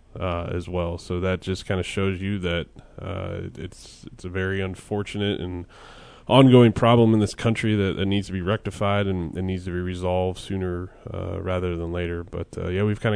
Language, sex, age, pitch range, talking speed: English, male, 20-39, 90-100 Hz, 205 wpm